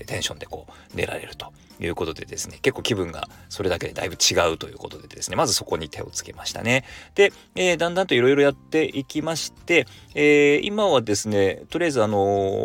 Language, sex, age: Japanese, male, 40-59